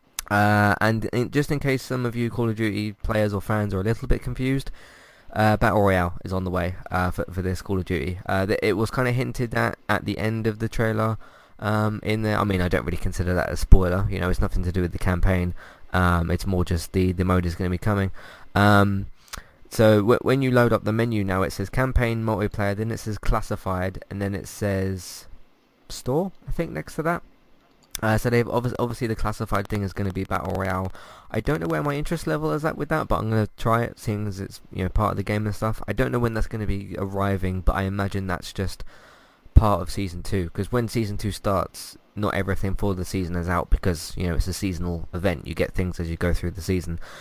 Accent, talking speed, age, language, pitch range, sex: British, 250 wpm, 20-39, English, 95-110 Hz, male